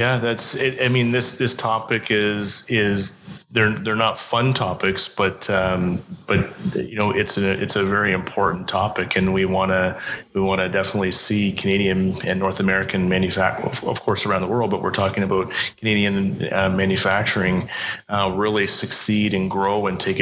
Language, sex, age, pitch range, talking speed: English, male, 30-49, 95-110 Hz, 180 wpm